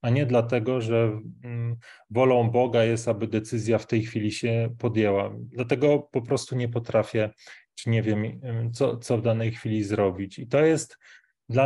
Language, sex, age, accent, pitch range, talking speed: Polish, male, 30-49, native, 115-130 Hz, 165 wpm